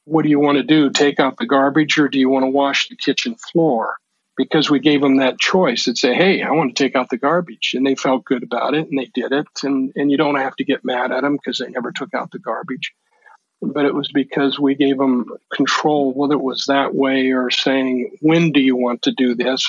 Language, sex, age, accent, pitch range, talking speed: English, male, 50-69, American, 130-145 Hz, 255 wpm